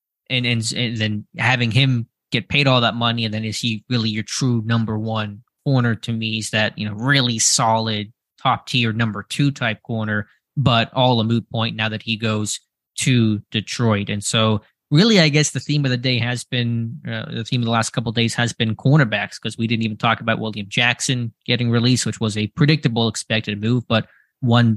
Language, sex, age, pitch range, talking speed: English, male, 20-39, 110-125 Hz, 215 wpm